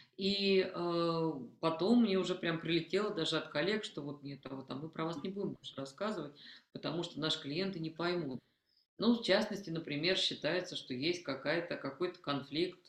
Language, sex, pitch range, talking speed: Russian, female, 135-175 Hz, 175 wpm